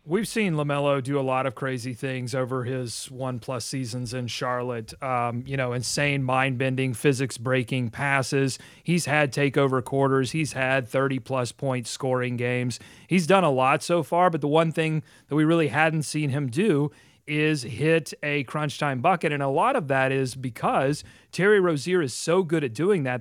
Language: English